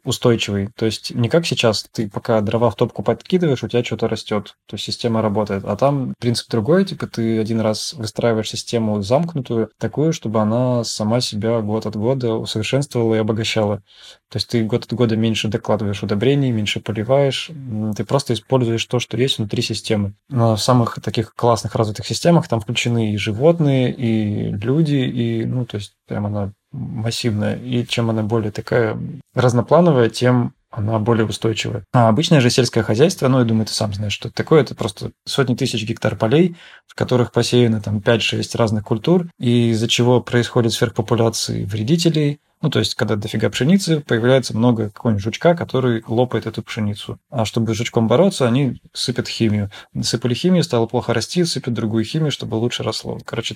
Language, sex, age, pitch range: Russian, male, 20-39, 110-125 Hz